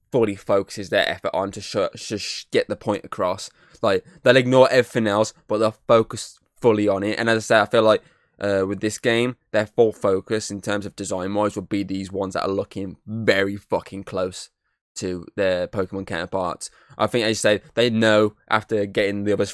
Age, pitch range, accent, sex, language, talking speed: 10-29, 100-115 Hz, British, male, English, 205 wpm